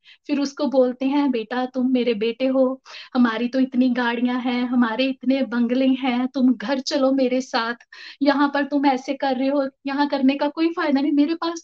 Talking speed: 195 wpm